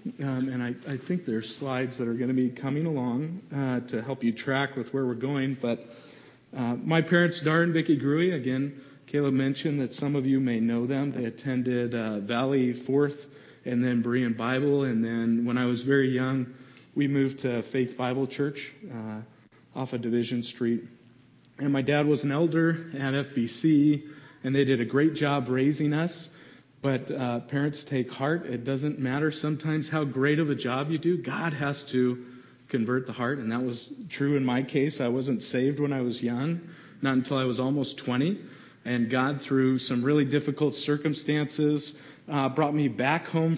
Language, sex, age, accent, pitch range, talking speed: English, male, 40-59, American, 125-145 Hz, 190 wpm